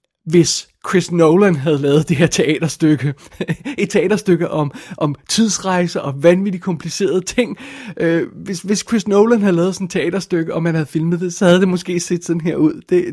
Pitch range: 155-185 Hz